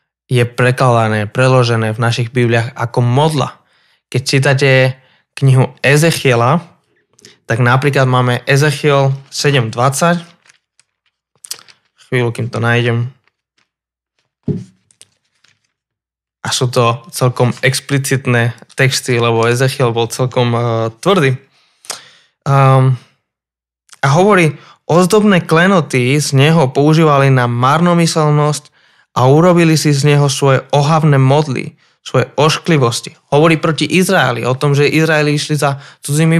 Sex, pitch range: male, 125-150 Hz